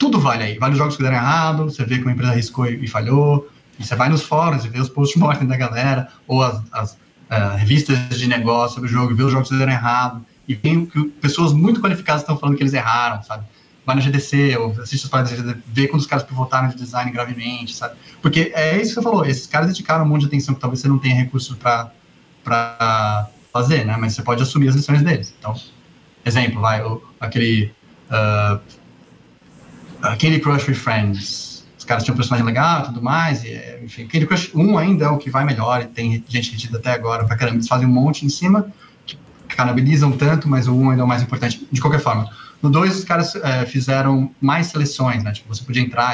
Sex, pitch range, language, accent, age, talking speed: male, 120-145 Hz, Portuguese, Brazilian, 20-39, 230 wpm